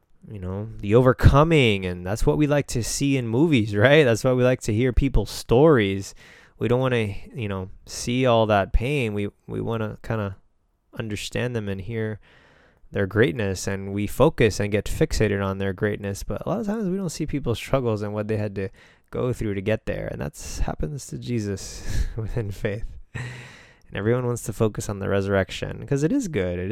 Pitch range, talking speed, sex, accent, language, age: 100-125 Hz, 210 wpm, male, American, English, 20-39